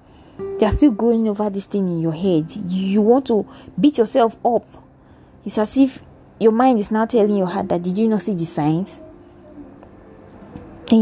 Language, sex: English, female